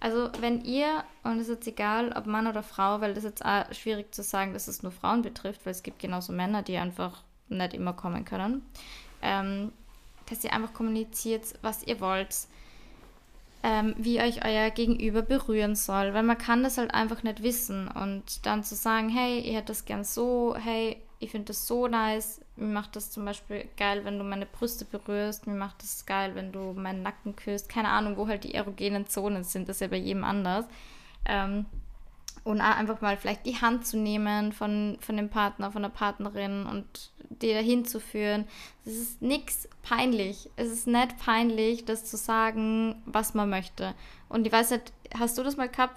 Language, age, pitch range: German, 10-29, 205-230 Hz